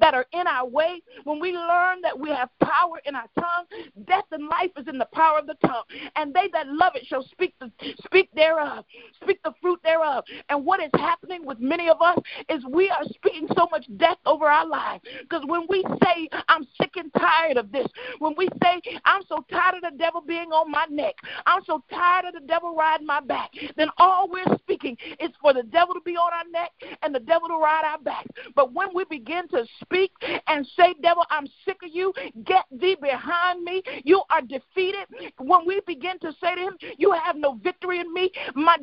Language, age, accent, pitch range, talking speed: English, 50-69, American, 295-360 Hz, 220 wpm